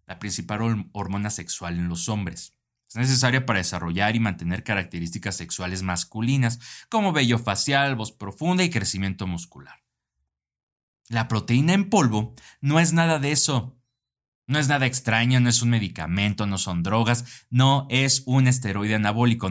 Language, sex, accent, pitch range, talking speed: Spanish, male, Mexican, 90-125 Hz, 150 wpm